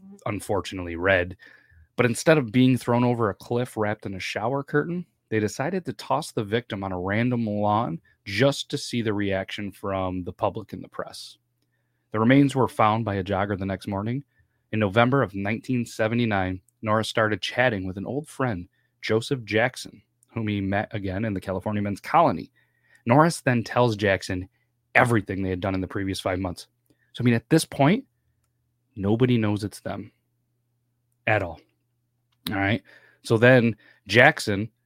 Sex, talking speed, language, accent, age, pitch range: male, 170 wpm, English, American, 30-49, 100-125 Hz